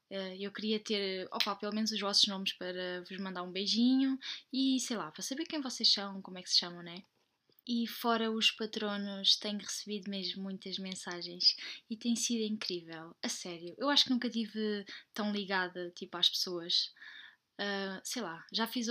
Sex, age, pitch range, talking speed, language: female, 10-29, 190-225 Hz, 180 wpm, Portuguese